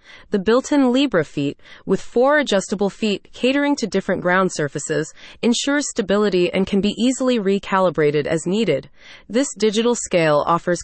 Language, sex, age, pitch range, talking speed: English, female, 30-49, 170-220 Hz, 145 wpm